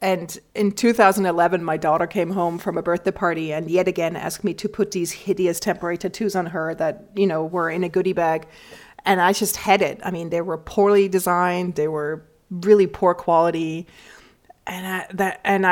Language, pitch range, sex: English, 170-205 Hz, female